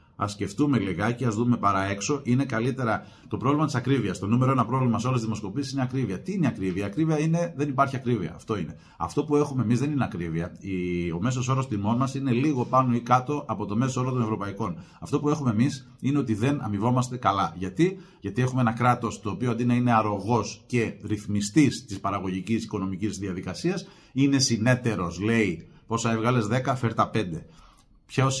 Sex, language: male, Greek